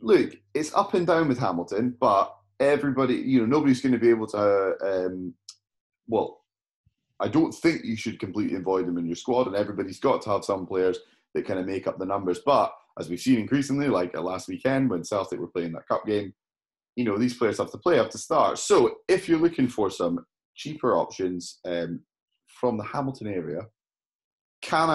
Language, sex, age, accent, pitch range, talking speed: English, male, 30-49, British, 95-135 Hz, 205 wpm